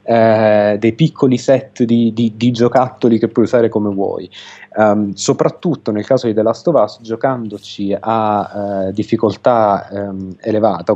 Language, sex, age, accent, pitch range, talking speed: Italian, male, 30-49, native, 105-125 Hz, 155 wpm